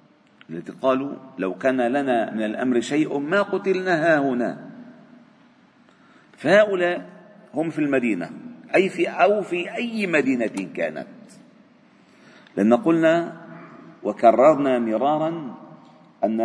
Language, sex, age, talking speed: Arabic, male, 50-69, 100 wpm